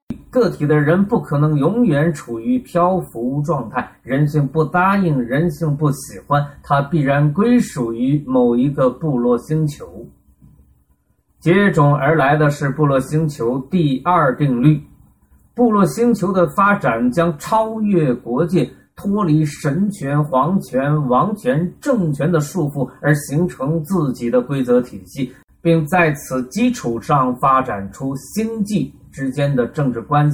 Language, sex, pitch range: Chinese, male, 130-175 Hz